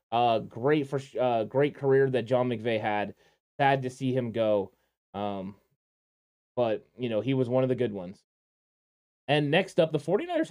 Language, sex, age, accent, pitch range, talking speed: English, male, 20-39, American, 120-140 Hz, 175 wpm